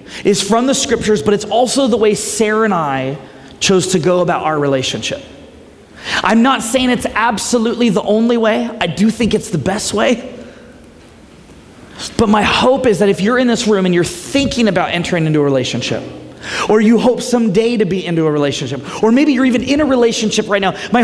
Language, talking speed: English, 200 wpm